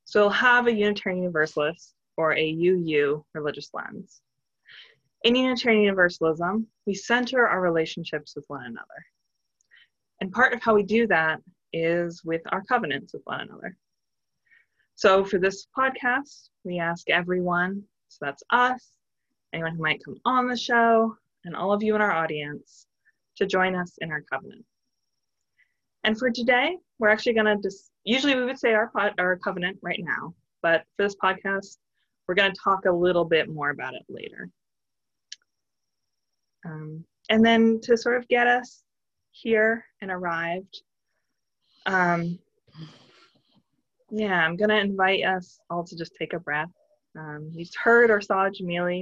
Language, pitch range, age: English, 165-220 Hz, 20-39